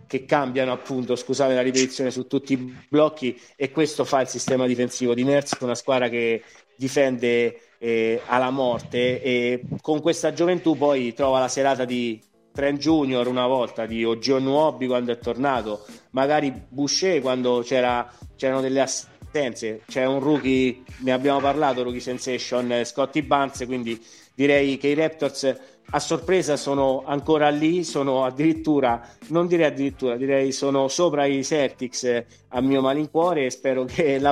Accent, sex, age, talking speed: native, male, 30-49, 155 wpm